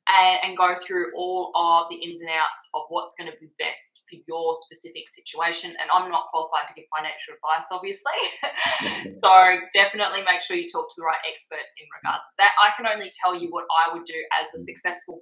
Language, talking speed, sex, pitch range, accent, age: English, 215 wpm, female, 170-210 Hz, Australian, 20-39